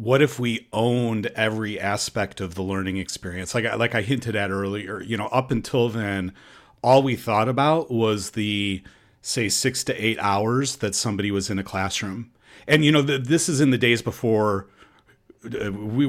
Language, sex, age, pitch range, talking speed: English, male, 40-59, 100-125 Hz, 185 wpm